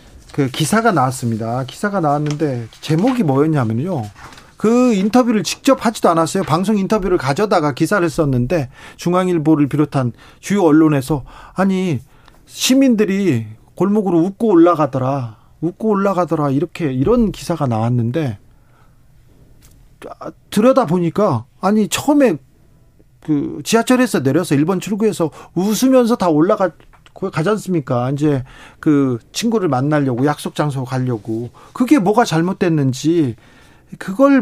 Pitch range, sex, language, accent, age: 135-185 Hz, male, Korean, native, 40-59